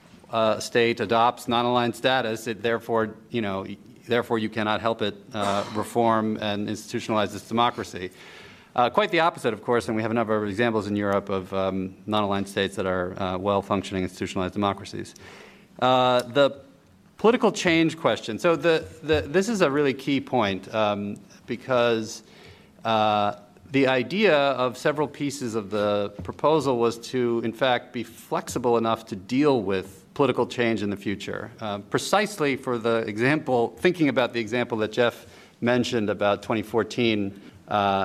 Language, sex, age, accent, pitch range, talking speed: English, male, 40-59, American, 105-130 Hz, 155 wpm